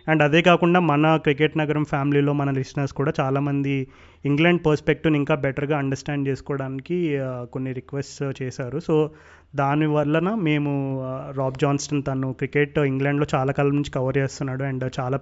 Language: Telugu